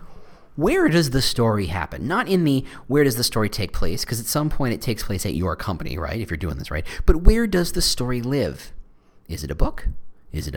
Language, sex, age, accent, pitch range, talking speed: English, male, 40-59, American, 95-135 Hz, 240 wpm